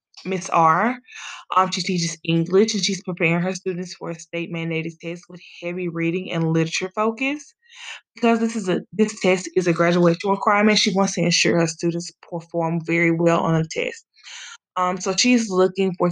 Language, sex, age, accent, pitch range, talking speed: English, female, 10-29, American, 175-220 Hz, 180 wpm